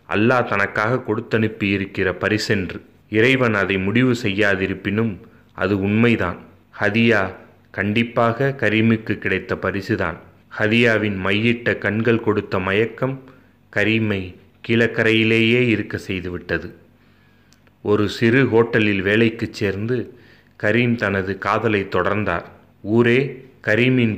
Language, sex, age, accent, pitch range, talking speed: Tamil, male, 30-49, native, 100-115 Hz, 90 wpm